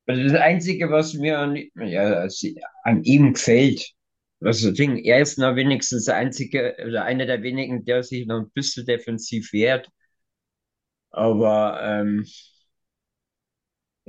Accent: German